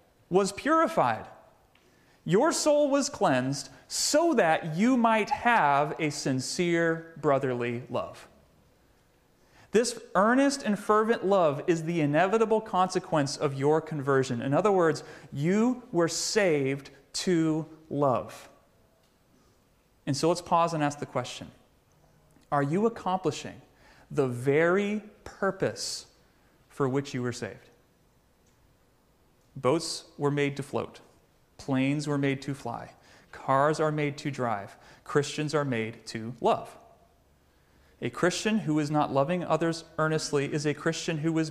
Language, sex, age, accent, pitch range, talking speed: English, male, 30-49, American, 140-185 Hz, 125 wpm